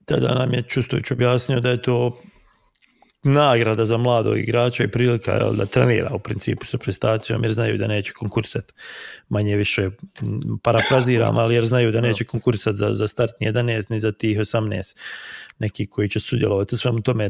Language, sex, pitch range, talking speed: English, male, 105-125 Hz, 175 wpm